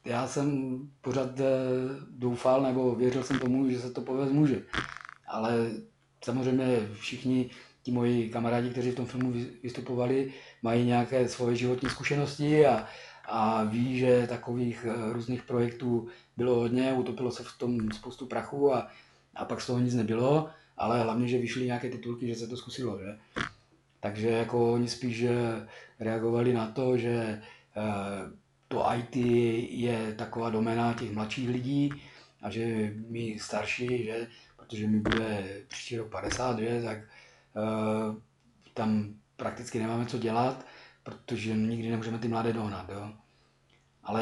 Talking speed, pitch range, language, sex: 145 wpm, 115-125 Hz, Czech, male